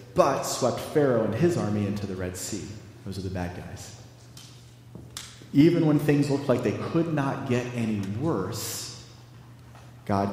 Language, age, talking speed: English, 30-49, 155 wpm